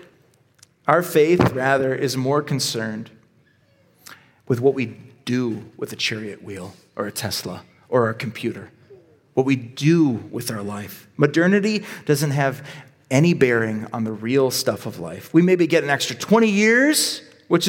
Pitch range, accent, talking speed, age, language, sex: 120-160 Hz, American, 155 wpm, 40-59, English, male